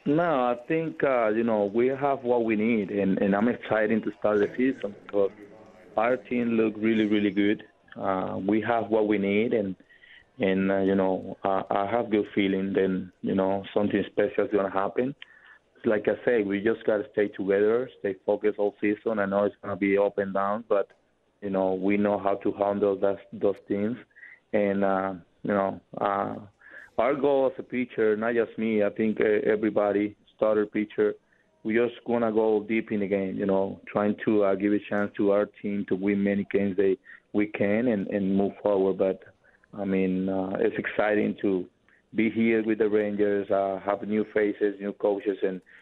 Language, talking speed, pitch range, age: English, 195 wpm, 100-110 Hz, 30-49